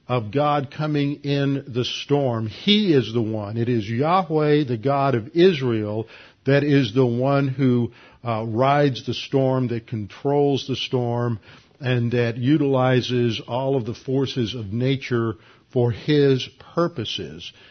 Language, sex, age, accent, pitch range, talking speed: English, male, 50-69, American, 115-135 Hz, 140 wpm